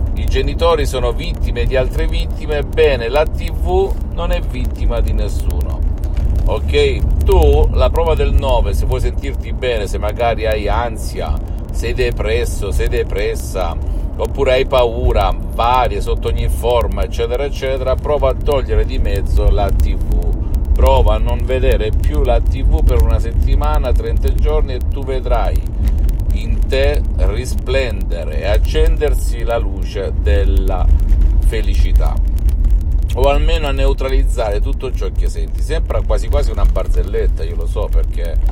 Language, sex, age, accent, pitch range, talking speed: Italian, male, 50-69, native, 75-90 Hz, 140 wpm